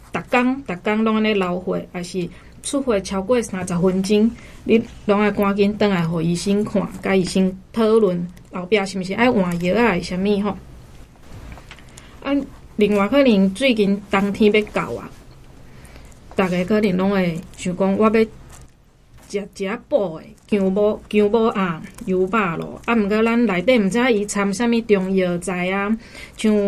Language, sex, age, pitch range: Chinese, female, 20-39, 185-225 Hz